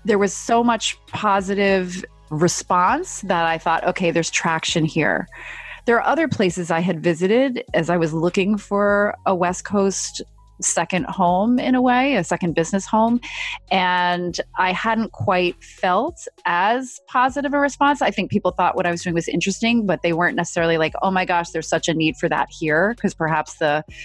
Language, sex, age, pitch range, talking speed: English, female, 30-49, 165-205 Hz, 185 wpm